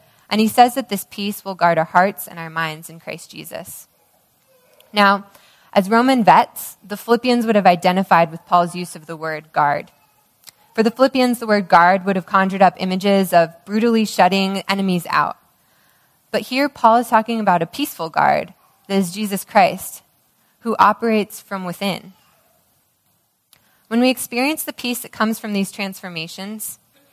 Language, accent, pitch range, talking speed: English, American, 175-220 Hz, 165 wpm